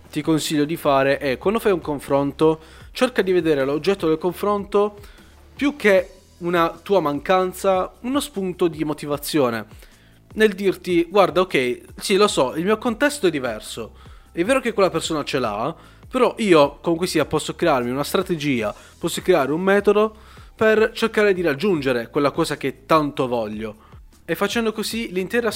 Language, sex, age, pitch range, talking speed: Italian, male, 20-39, 140-190 Hz, 160 wpm